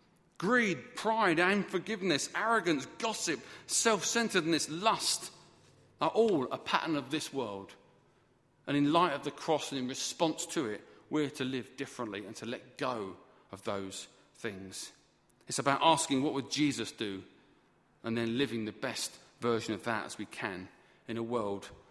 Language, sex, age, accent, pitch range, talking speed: English, male, 40-59, British, 110-145 Hz, 155 wpm